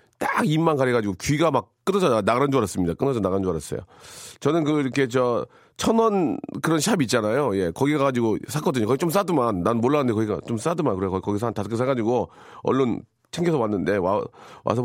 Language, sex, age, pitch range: Korean, male, 40-59, 100-155 Hz